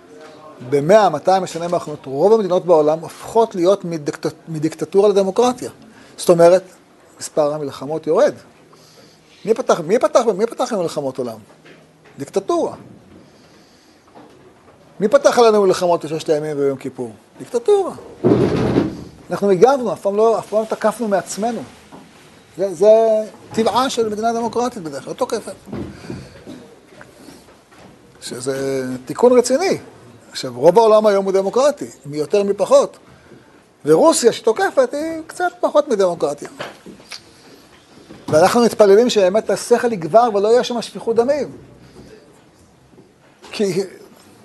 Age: 40-59